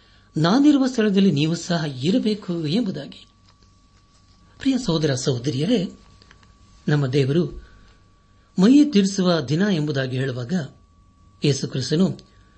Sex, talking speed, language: male, 75 wpm, Kannada